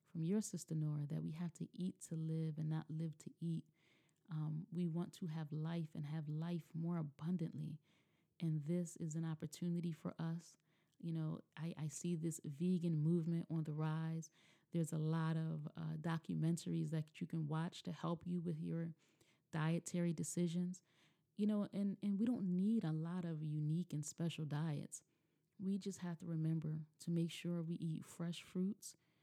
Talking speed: 180 wpm